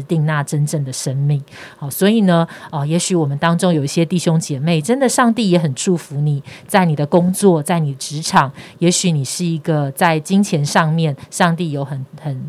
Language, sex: Chinese, female